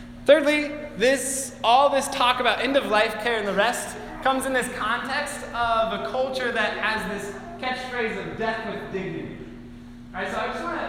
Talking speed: 170 wpm